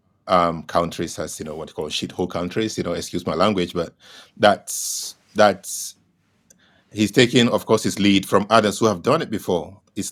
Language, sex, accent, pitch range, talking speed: English, male, Nigerian, 90-105 Hz, 190 wpm